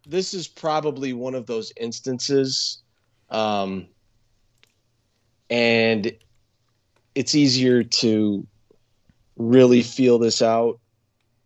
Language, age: English, 30-49